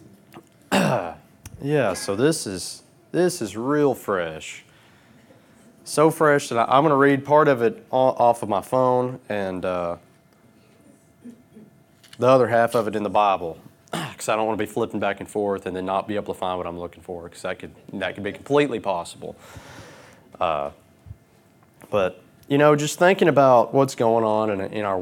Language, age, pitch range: English, 30-49, 100-135 Hz